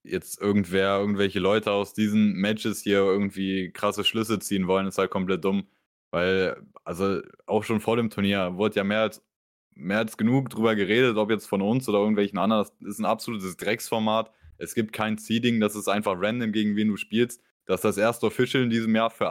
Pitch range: 100-115 Hz